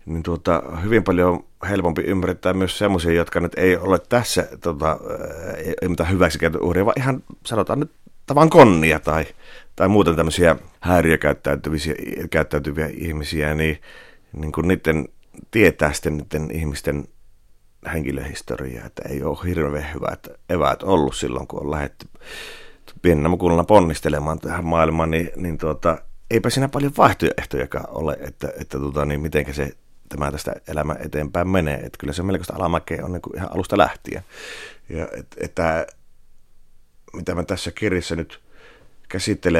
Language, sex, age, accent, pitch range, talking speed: Finnish, male, 40-59, native, 75-95 Hz, 145 wpm